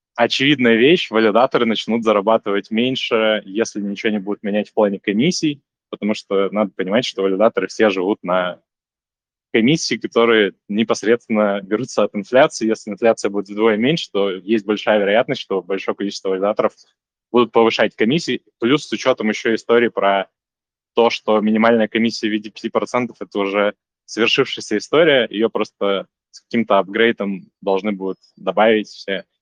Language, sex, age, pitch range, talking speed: Russian, male, 20-39, 100-115 Hz, 145 wpm